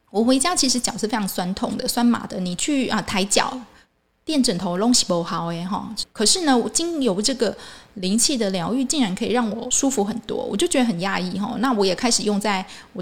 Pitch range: 195-250 Hz